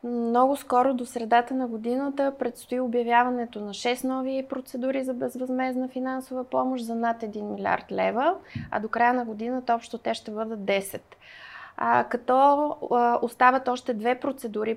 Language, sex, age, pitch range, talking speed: Bulgarian, female, 20-39, 230-265 Hz, 145 wpm